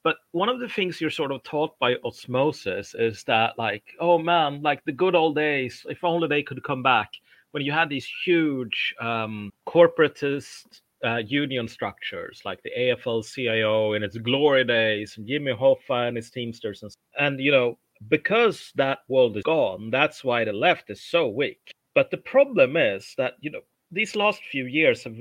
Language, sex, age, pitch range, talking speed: English, male, 30-49, 120-165 Hz, 185 wpm